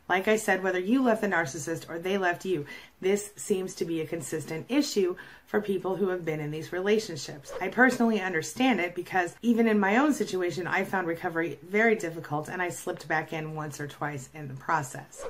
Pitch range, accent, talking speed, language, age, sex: 165-210 Hz, American, 210 wpm, English, 30-49, female